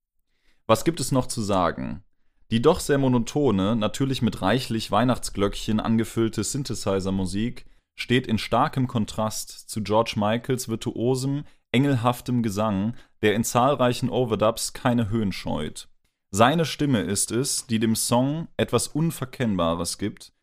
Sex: male